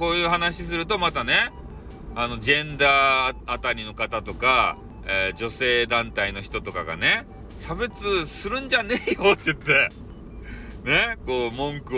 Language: Japanese